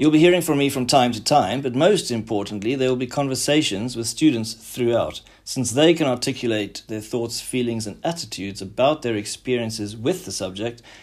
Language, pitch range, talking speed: English, 110-140 Hz, 185 wpm